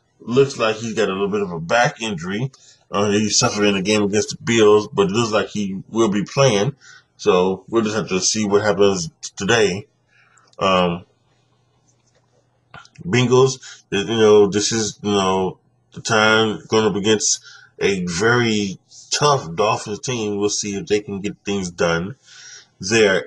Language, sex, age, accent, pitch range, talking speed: English, male, 20-39, American, 105-125 Hz, 160 wpm